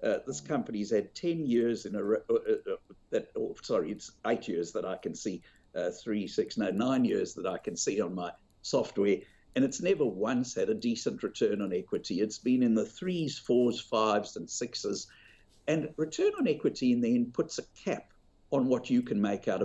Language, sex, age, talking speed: English, male, 60-79, 205 wpm